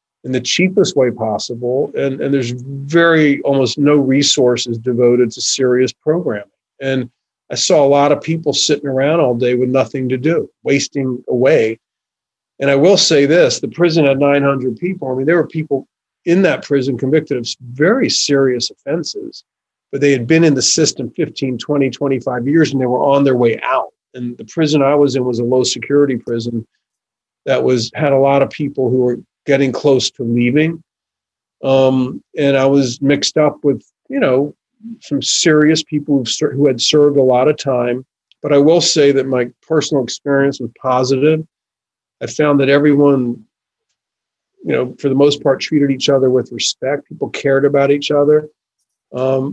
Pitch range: 125-150 Hz